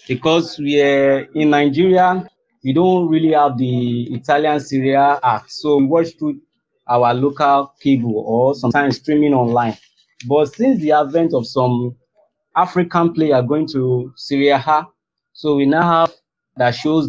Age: 30-49